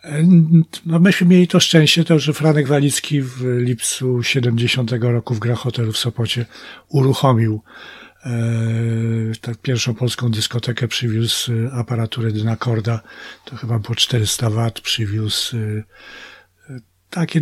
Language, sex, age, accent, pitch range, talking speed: Polish, male, 50-69, native, 115-135 Hz, 120 wpm